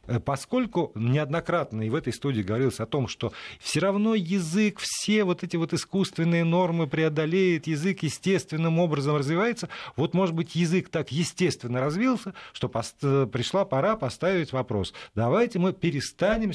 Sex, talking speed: male, 140 wpm